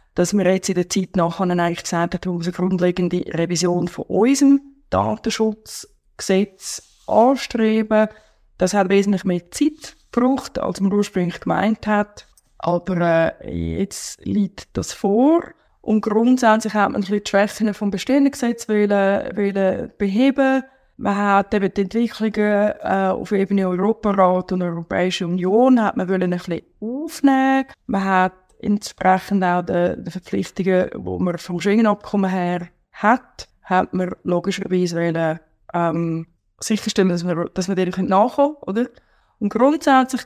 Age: 20-39